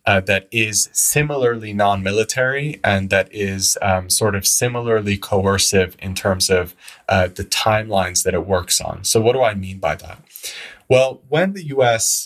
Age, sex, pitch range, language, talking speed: 20-39, male, 95-115 Hz, English, 165 wpm